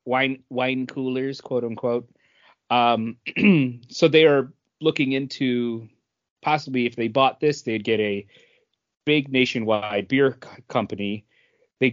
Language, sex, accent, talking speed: English, male, American, 120 wpm